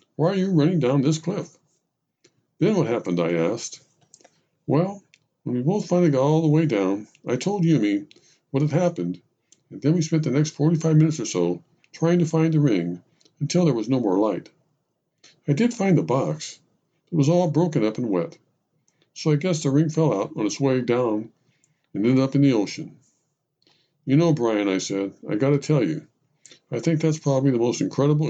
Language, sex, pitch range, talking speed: English, male, 135-170 Hz, 200 wpm